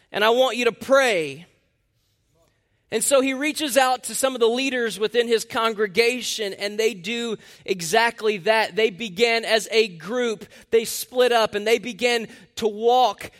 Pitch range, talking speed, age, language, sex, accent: 200-250 Hz, 165 wpm, 20-39, English, male, American